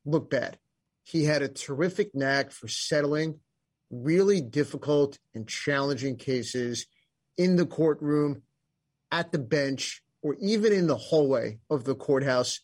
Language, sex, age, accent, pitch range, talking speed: English, male, 30-49, American, 135-155 Hz, 135 wpm